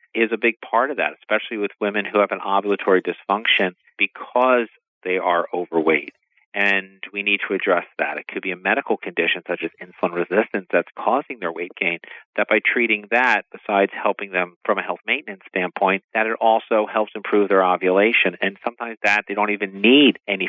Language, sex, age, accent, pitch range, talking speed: English, male, 40-59, American, 100-115 Hz, 195 wpm